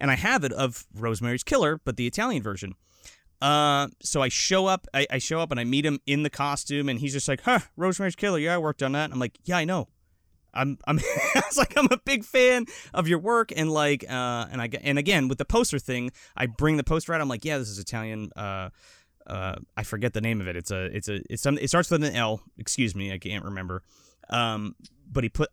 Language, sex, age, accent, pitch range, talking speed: English, male, 30-49, American, 110-160 Hz, 250 wpm